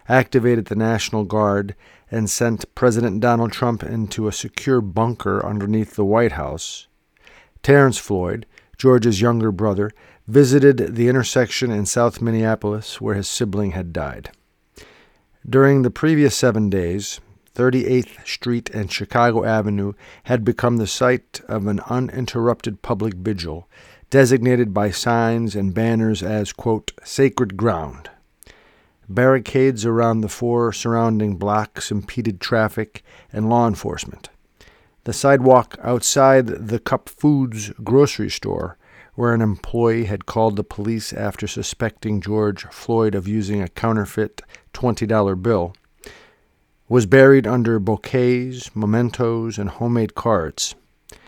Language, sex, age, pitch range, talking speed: English, male, 50-69, 105-125 Hz, 125 wpm